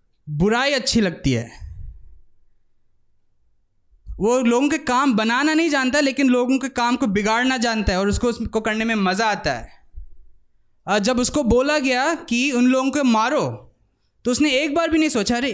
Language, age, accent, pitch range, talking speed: Hindi, 20-39, native, 165-255 Hz, 175 wpm